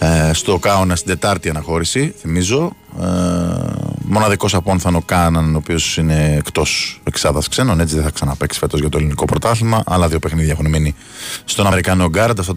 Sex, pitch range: male, 80-105 Hz